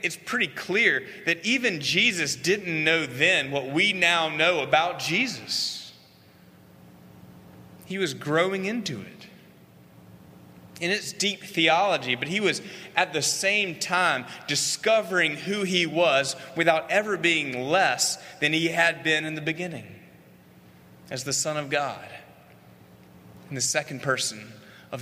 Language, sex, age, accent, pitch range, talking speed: English, male, 30-49, American, 120-170 Hz, 135 wpm